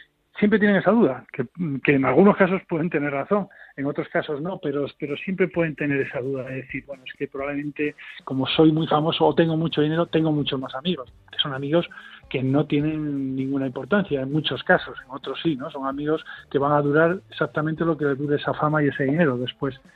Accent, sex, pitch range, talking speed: Spanish, male, 140-165 Hz, 220 wpm